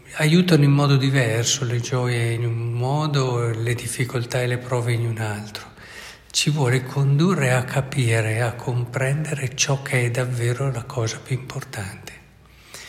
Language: Italian